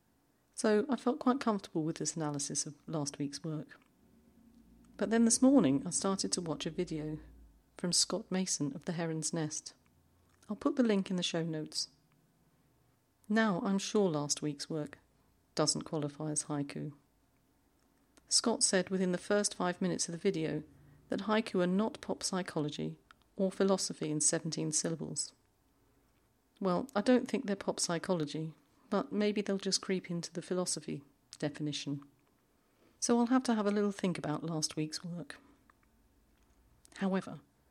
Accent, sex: British, female